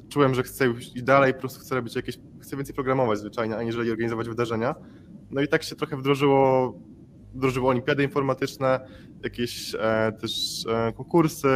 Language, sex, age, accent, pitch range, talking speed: Polish, male, 20-39, native, 115-135 Hz, 150 wpm